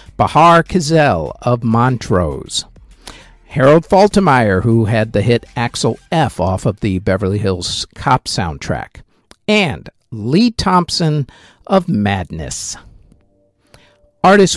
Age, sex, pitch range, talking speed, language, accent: 50-69, male, 105-150 Hz, 105 wpm, English, American